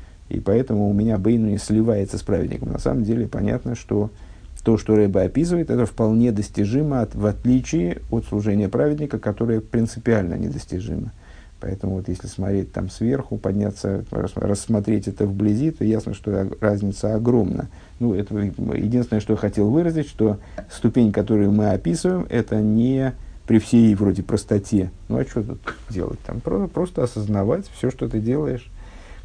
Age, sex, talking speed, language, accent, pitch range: 50-69, male, 155 wpm, Russian, native, 95-115 Hz